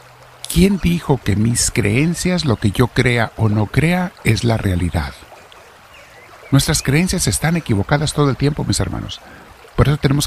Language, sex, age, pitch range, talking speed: Spanish, male, 50-69, 100-145 Hz, 160 wpm